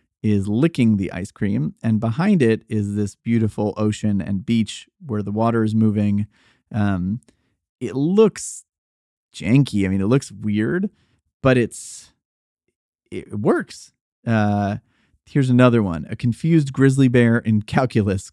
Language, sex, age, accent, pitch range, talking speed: English, male, 30-49, American, 105-130 Hz, 140 wpm